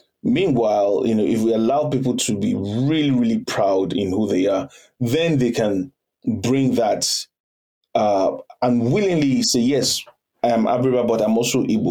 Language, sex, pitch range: English, male, 110-130 Hz